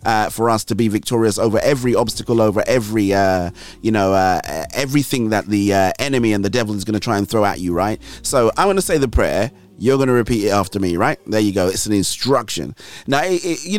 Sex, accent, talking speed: male, British, 230 wpm